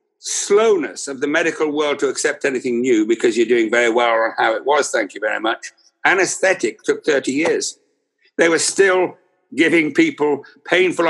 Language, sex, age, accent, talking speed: English, male, 60-79, British, 175 wpm